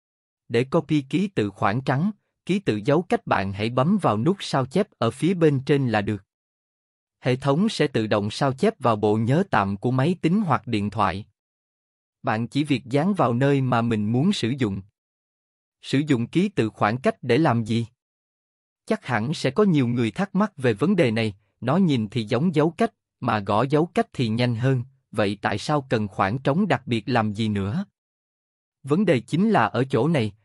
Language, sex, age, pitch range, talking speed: Vietnamese, male, 20-39, 110-155 Hz, 205 wpm